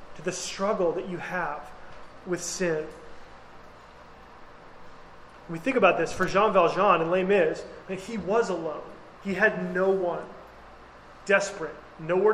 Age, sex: 30-49, male